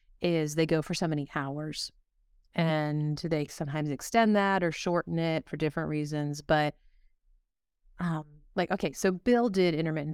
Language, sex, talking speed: English, female, 155 wpm